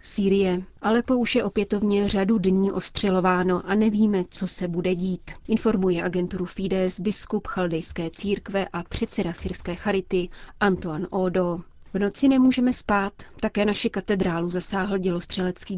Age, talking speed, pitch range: 30-49, 135 wpm, 185-210 Hz